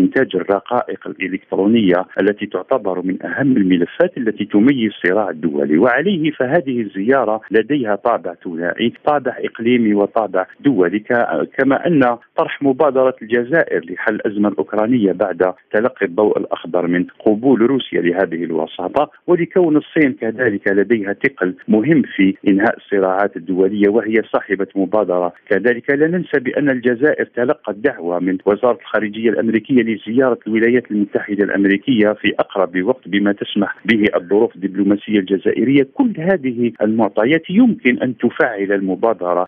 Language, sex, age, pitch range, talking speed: Arabic, male, 50-69, 100-130 Hz, 125 wpm